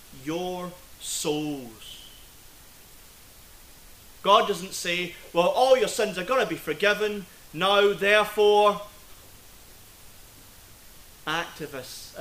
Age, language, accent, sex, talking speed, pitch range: 30-49, English, British, male, 85 wpm, 120-160 Hz